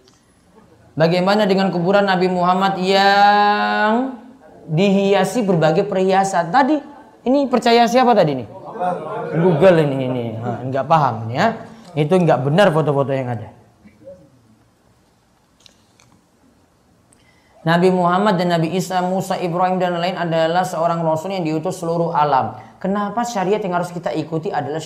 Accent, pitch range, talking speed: native, 165-250 Hz, 125 wpm